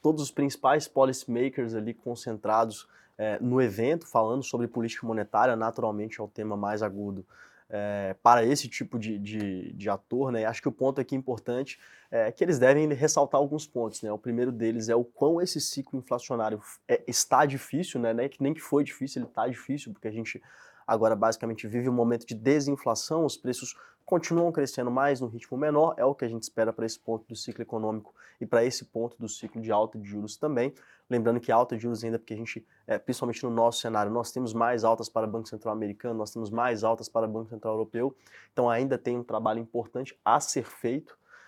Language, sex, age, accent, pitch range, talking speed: Portuguese, male, 20-39, Brazilian, 115-130 Hz, 210 wpm